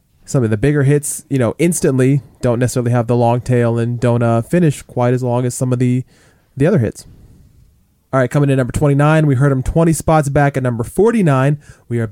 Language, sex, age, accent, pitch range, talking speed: English, male, 20-39, American, 120-145 Hz, 225 wpm